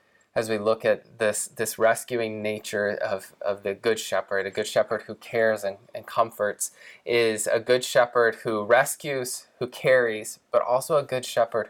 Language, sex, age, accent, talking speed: English, male, 20-39, American, 175 wpm